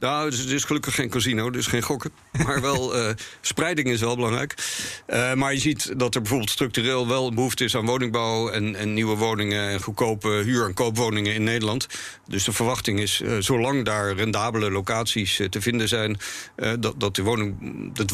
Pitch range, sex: 100-120 Hz, male